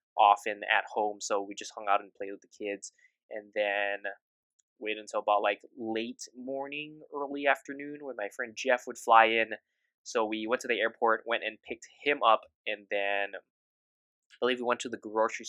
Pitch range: 105-125 Hz